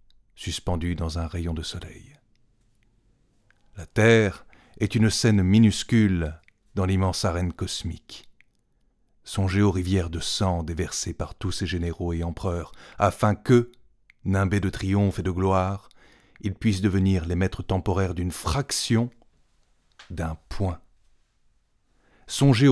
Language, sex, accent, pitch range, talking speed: French, male, French, 90-110 Hz, 125 wpm